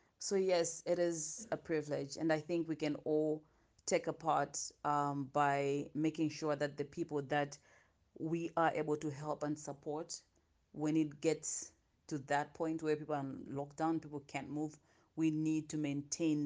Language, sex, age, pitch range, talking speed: English, female, 30-49, 145-160 Hz, 175 wpm